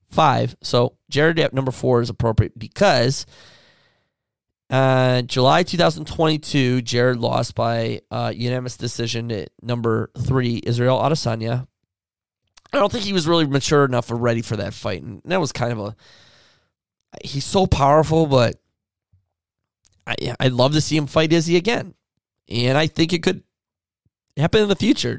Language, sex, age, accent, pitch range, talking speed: English, male, 20-39, American, 100-155 Hz, 150 wpm